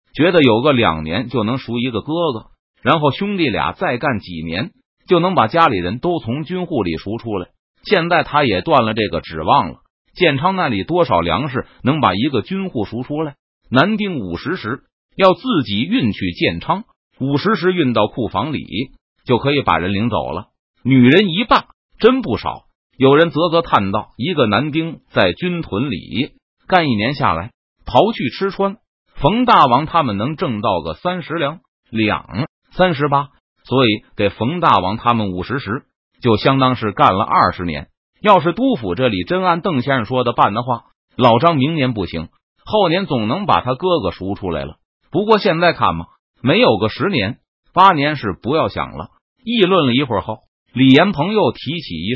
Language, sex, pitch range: Chinese, male, 110-175 Hz